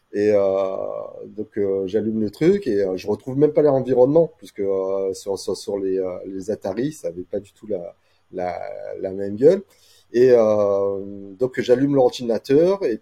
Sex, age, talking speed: male, 30-49, 180 wpm